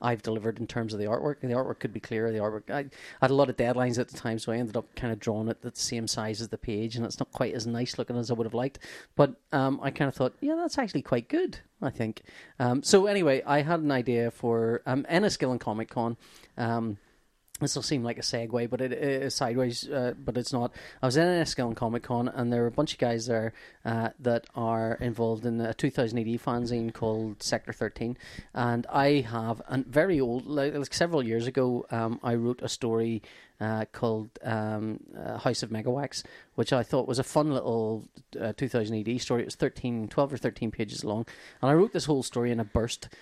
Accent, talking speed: Irish, 230 wpm